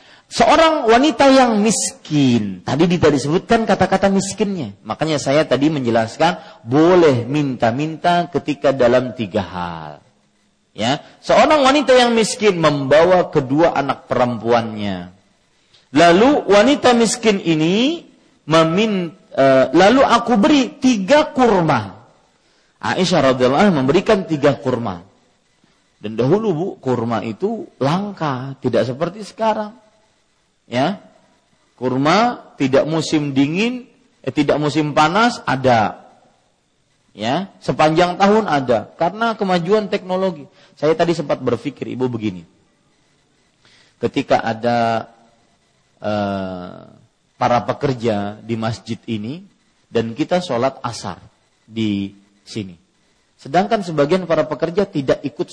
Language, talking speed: Indonesian, 100 wpm